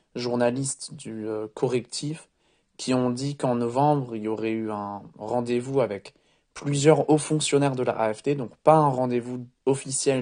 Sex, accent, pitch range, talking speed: male, French, 115-140 Hz, 160 wpm